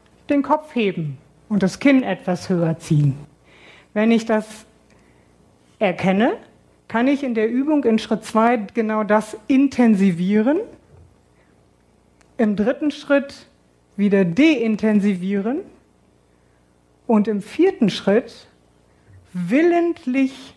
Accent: German